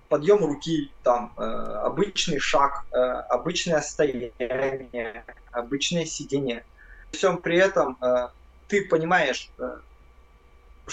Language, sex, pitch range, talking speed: Russian, male, 130-185 Hz, 75 wpm